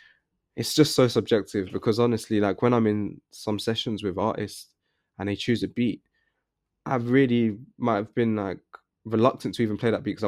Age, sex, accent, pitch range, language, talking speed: 20-39, male, British, 100-115 Hz, English, 180 wpm